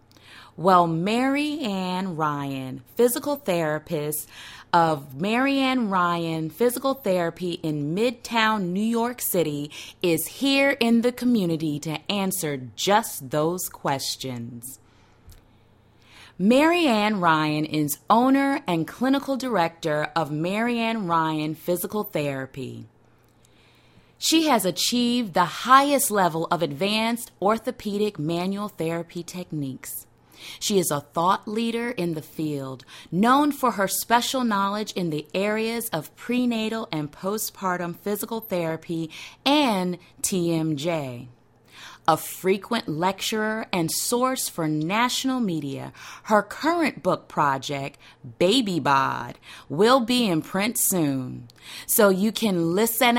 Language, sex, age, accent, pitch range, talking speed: English, female, 30-49, American, 155-230 Hz, 115 wpm